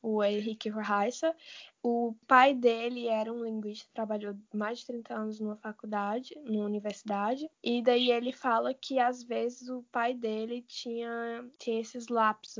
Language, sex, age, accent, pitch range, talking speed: Portuguese, female, 10-29, Brazilian, 220-250 Hz, 150 wpm